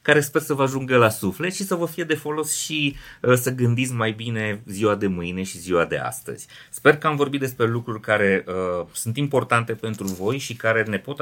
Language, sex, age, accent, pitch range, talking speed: Romanian, male, 30-49, native, 100-125 Hz, 215 wpm